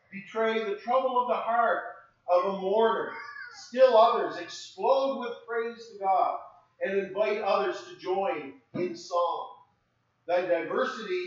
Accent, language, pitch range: American, English, 175-275 Hz